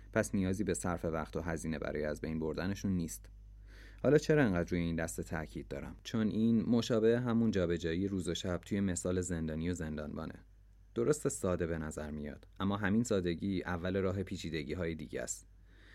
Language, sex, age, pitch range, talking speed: Persian, male, 30-49, 85-100 Hz, 175 wpm